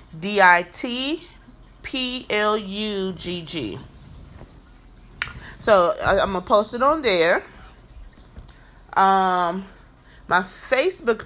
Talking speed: 95 wpm